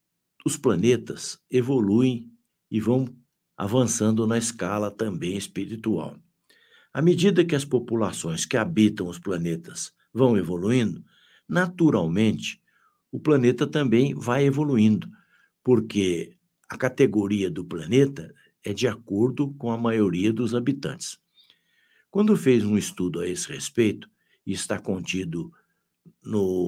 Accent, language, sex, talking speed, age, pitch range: Brazilian, Portuguese, male, 115 wpm, 60-79, 105-145 Hz